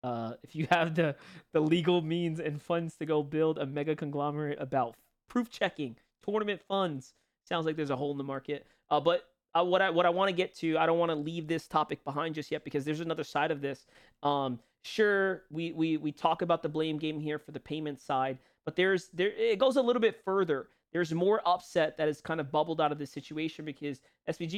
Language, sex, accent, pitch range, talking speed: English, male, American, 150-195 Hz, 230 wpm